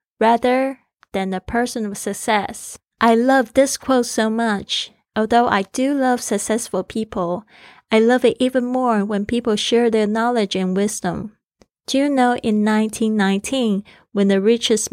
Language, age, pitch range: English, 20-39, 195-245 Hz